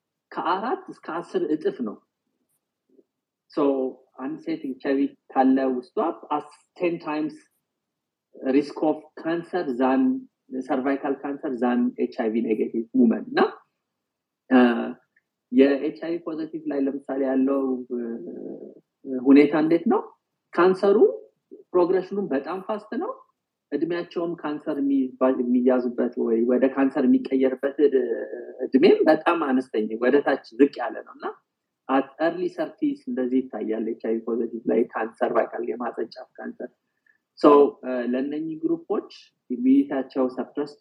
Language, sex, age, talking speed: English, male, 30-49, 95 wpm